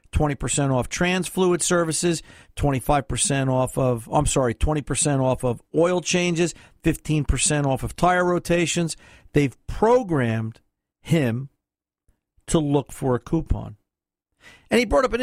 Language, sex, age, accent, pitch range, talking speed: English, male, 50-69, American, 140-180 Hz, 125 wpm